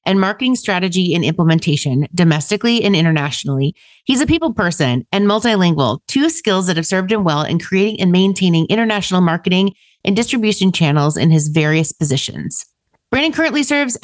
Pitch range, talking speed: 165-220 Hz, 160 wpm